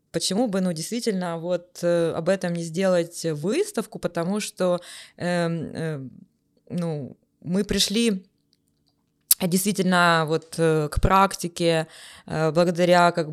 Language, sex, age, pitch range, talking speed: Ukrainian, female, 20-39, 175-225 Hz, 105 wpm